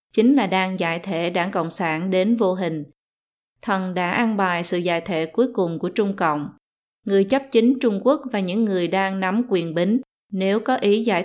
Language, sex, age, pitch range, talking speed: Vietnamese, female, 20-39, 175-220 Hz, 210 wpm